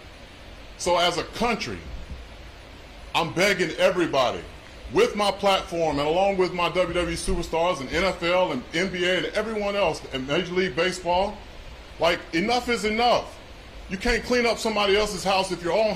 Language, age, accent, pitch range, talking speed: English, 30-49, American, 165-210 Hz, 155 wpm